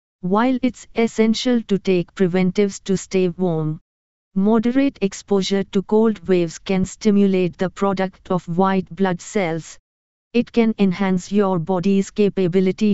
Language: English